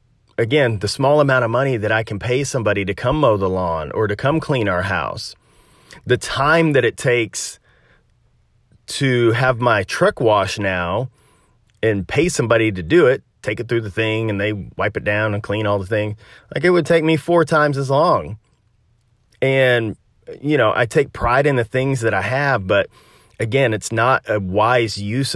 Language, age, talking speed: English, 30-49, 195 wpm